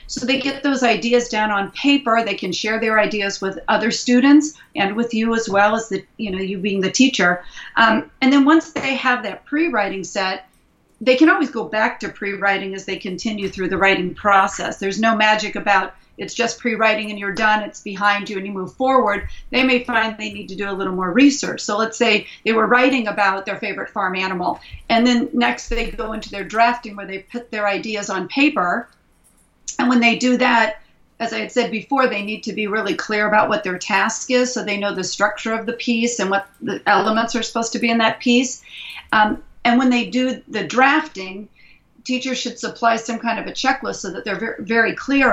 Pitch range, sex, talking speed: 200-245 Hz, female, 220 wpm